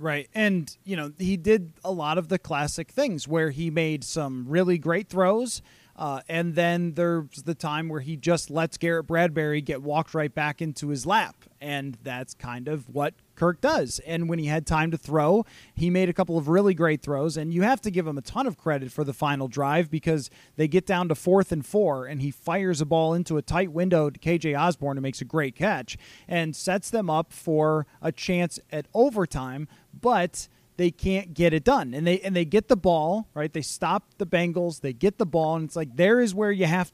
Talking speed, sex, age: 225 wpm, male, 30-49